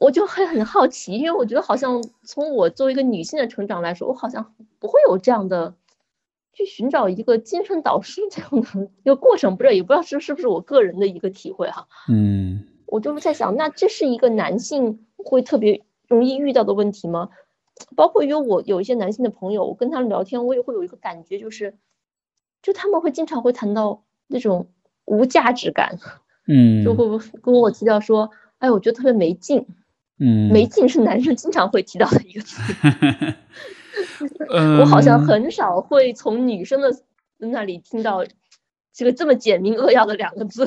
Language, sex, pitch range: Chinese, female, 190-260 Hz